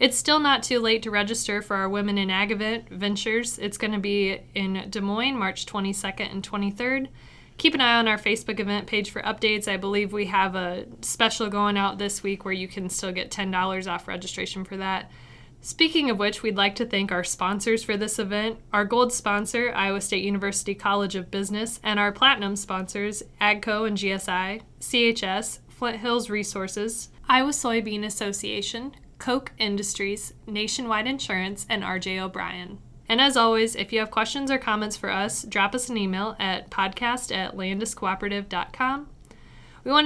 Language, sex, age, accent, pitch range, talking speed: English, female, 20-39, American, 195-230 Hz, 175 wpm